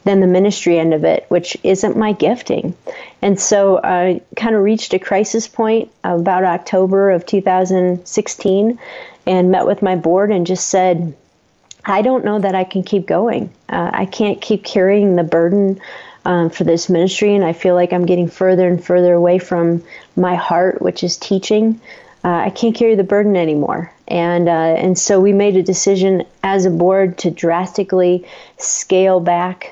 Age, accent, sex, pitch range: 40-59, American, female, 175-195 Hz